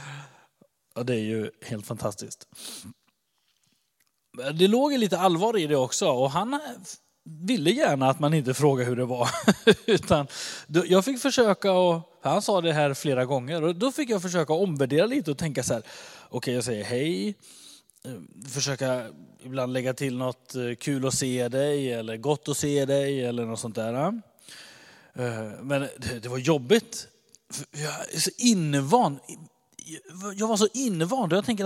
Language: Swedish